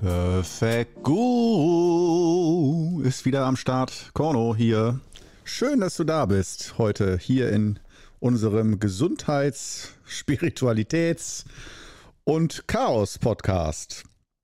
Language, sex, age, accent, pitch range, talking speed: German, male, 50-69, German, 105-145 Hz, 85 wpm